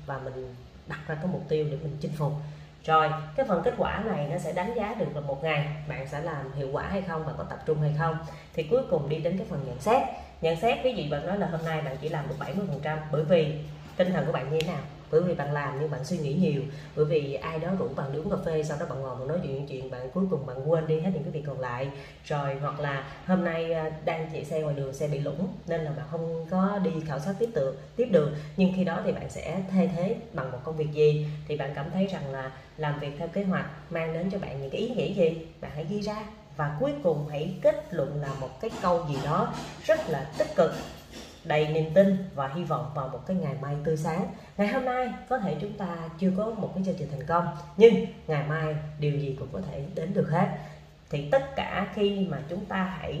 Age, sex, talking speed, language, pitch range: 20-39, female, 265 wpm, Vietnamese, 150-185 Hz